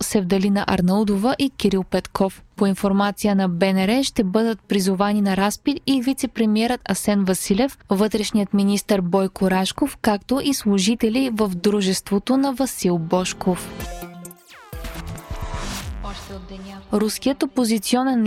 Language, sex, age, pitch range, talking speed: Bulgarian, female, 20-39, 195-235 Hz, 105 wpm